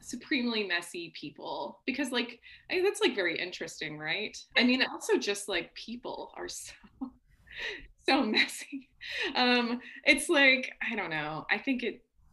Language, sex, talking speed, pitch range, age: English, female, 140 wpm, 170-240 Hz, 20-39